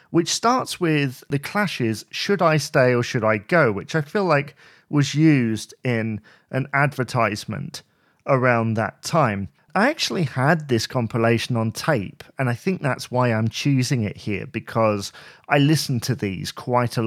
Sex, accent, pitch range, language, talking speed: male, British, 115-155 Hz, English, 165 wpm